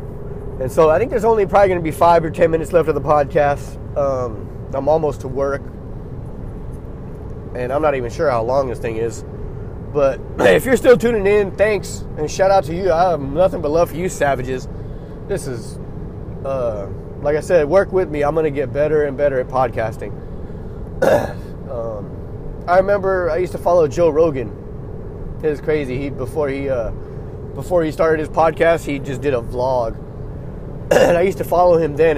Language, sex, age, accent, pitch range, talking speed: English, male, 20-39, American, 125-155 Hz, 190 wpm